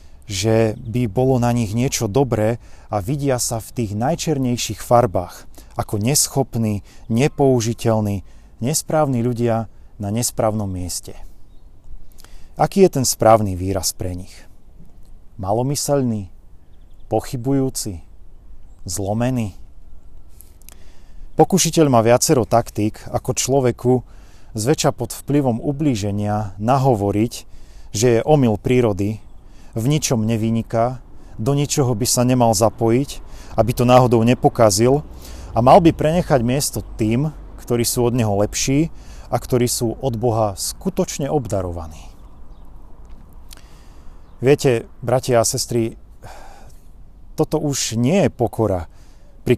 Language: Slovak